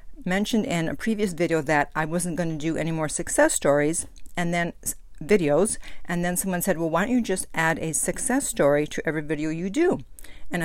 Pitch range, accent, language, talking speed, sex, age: 155-190 Hz, American, English, 210 wpm, female, 50-69